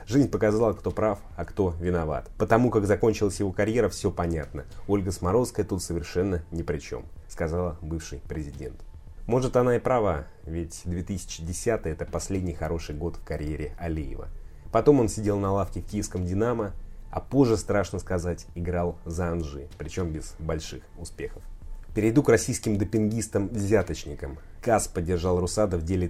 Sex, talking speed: male, 150 wpm